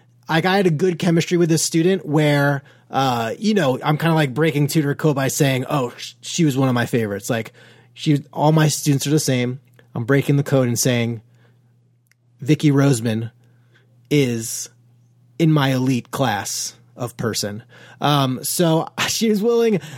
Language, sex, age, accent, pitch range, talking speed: English, male, 30-49, American, 125-155 Hz, 170 wpm